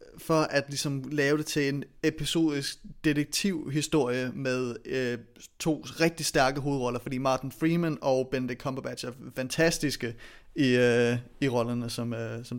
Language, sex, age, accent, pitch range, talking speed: Danish, male, 30-49, native, 130-155 Hz, 135 wpm